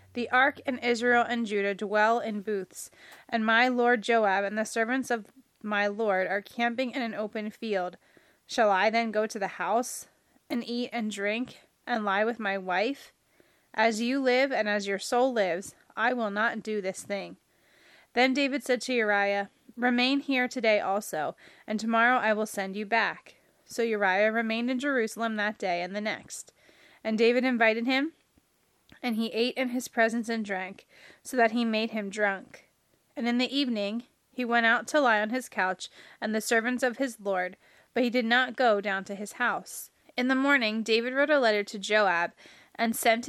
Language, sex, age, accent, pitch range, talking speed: English, female, 20-39, American, 205-245 Hz, 190 wpm